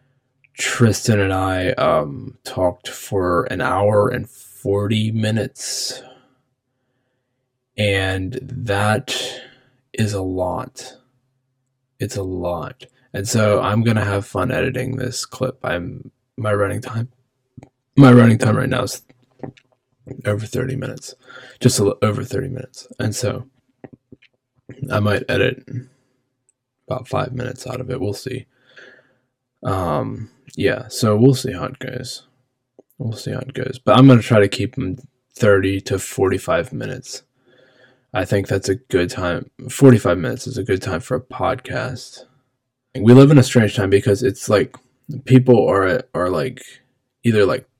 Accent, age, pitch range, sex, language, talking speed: American, 20-39, 115-130 Hz, male, English, 145 wpm